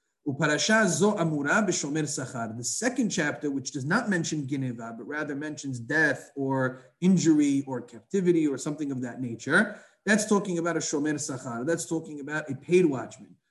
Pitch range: 140-175 Hz